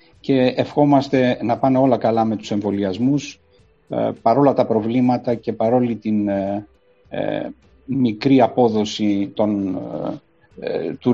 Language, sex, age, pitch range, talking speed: Greek, male, 50-69, 105-130 Hz, 95 wpm